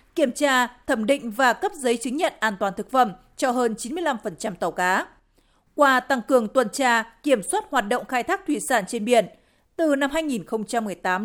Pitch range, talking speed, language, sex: 225-275 Hz, 190 wpm, Vietnamese, female